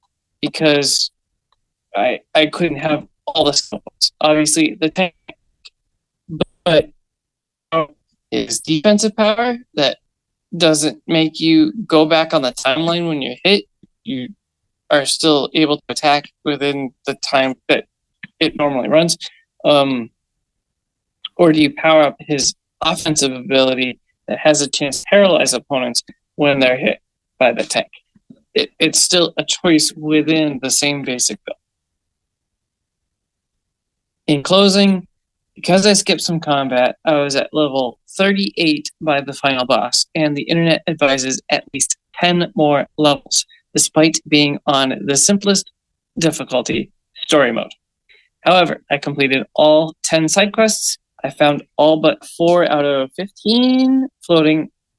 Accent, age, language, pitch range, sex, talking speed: American, 20-39, English, 140-175 Hz, male, 130 wpm